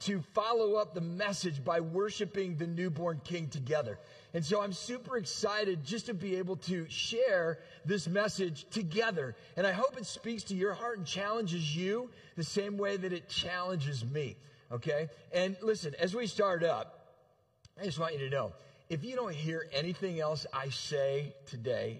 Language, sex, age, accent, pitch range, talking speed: English, male, 40-59, American, 145-200 Hz, 175 wpm